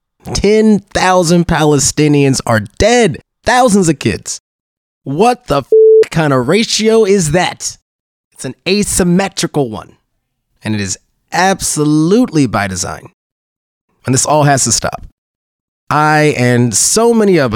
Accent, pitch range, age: American, 120-165 Hz, 30-49